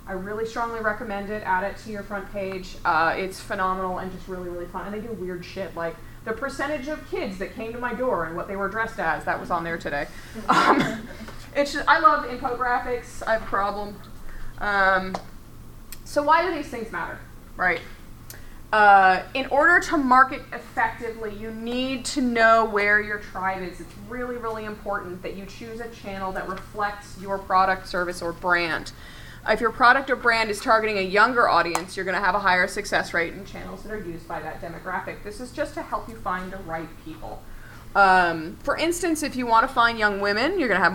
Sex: female